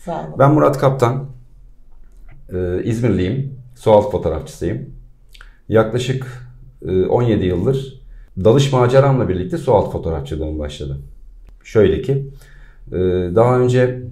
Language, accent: Turkish, native